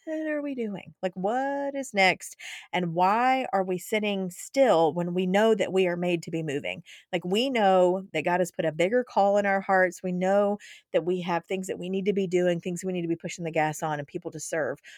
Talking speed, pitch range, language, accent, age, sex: 250 wpm, 175-210 Hz, English, American, 40-59, female